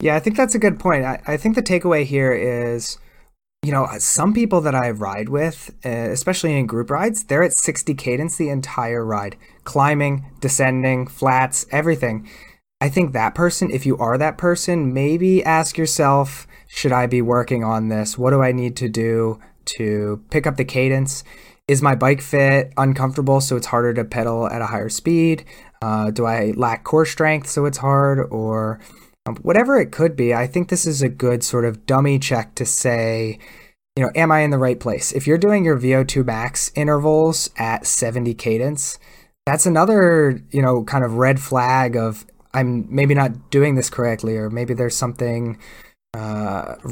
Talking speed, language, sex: 185 wpm, English, male